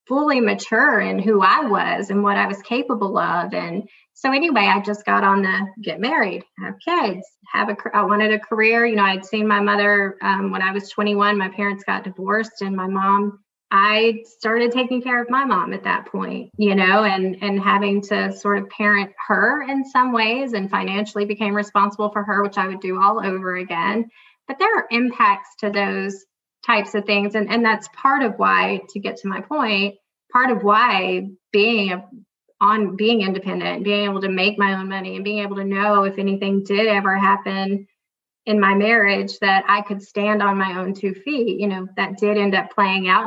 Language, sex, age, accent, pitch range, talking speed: English, female, 20-39, American, 195-225 Hz, 210 wpm